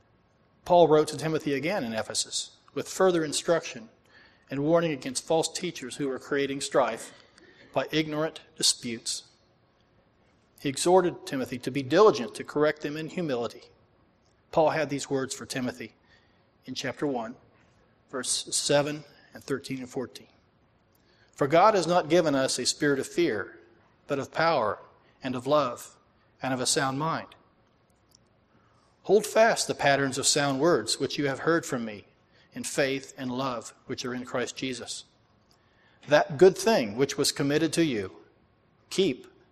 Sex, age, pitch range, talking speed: male, 40-59, 125-160 Hz, 150 wpm